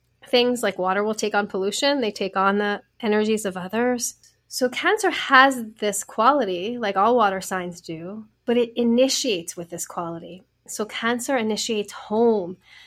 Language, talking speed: English, 160 wpm